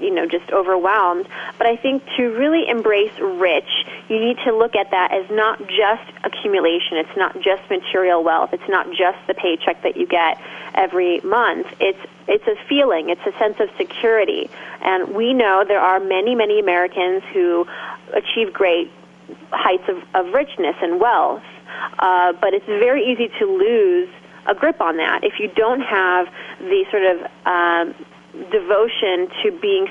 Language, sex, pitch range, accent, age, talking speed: English, female, 185-305 Hz, American, 20-39, 170 wpm